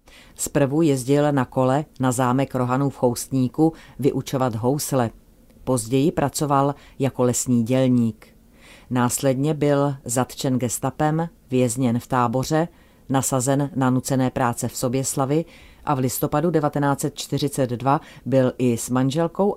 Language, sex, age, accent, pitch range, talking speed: Czech, female, 30-49, native, 125-145 Hz, 115 wpm